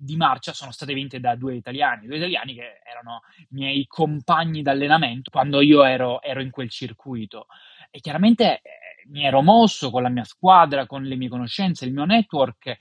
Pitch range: 130-175 Hz